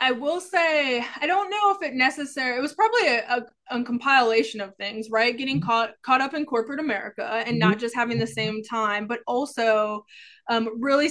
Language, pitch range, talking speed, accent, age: English, 220-250 Hz, 200 wpm, American, 20-39